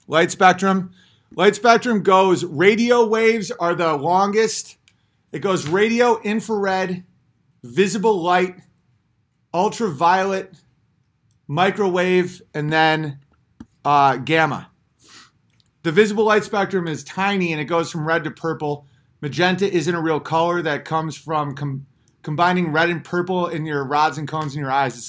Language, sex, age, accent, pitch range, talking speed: English, male, 30-49, American, 155-205 Hz, 135 wpm